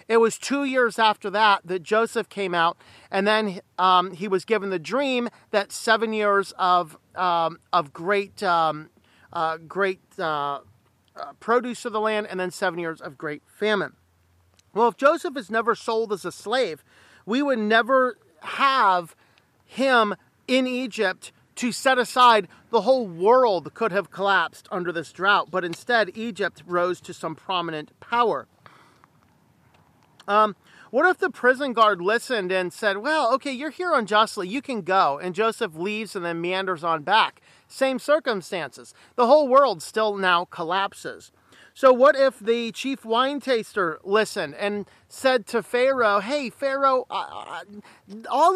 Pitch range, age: 185-255 Hz, 40-59